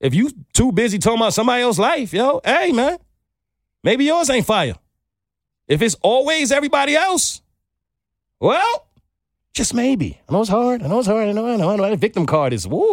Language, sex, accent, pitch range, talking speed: English, male, American, 160-245 Hz, 200 wpm